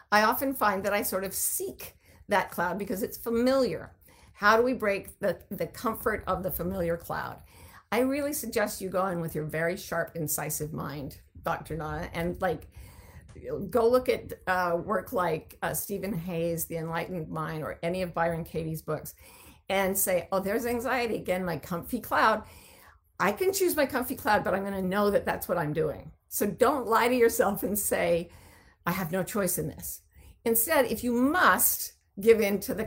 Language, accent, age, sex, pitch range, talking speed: English, American, 50-69, female, 165-225 Hz, 190 wpm